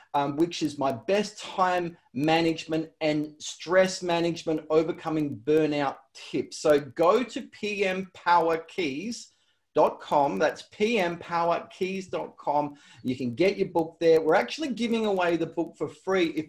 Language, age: English, 30-49